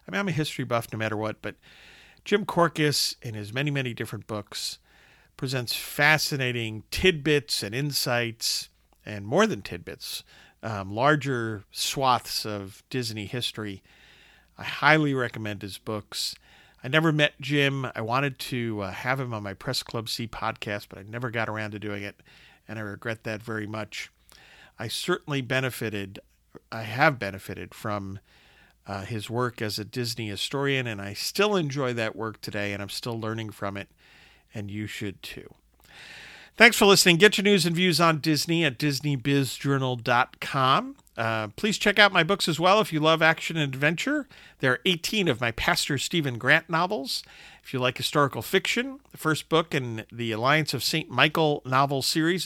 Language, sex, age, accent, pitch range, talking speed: English, male, 50-69, American, 110-155 Hz, 170 wpm